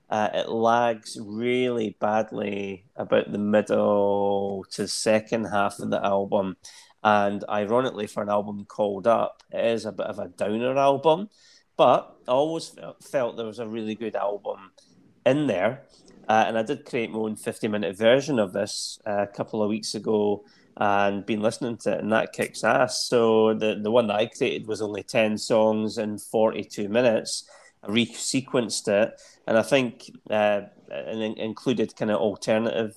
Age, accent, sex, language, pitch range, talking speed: 30-49, British, male, English, 105-115 Hz, 165 wpm